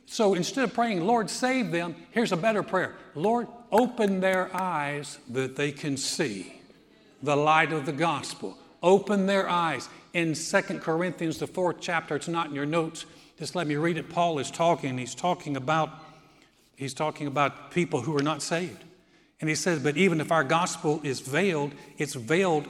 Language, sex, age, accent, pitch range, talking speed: English, male, 60-79, American, 145-185 Hz, 185 wpm